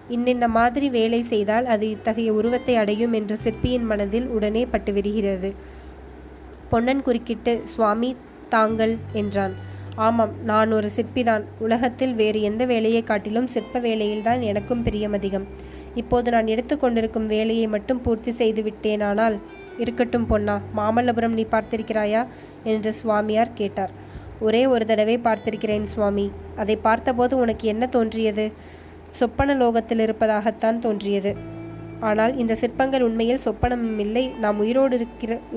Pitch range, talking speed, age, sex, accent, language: 210-235 Hz, 115 wpm, 20-39, female, native, Tamil